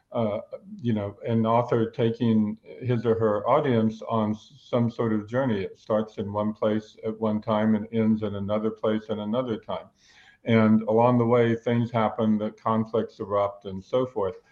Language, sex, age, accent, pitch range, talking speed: English, male, 50-69, American, 105-125 Hz, 180 wpm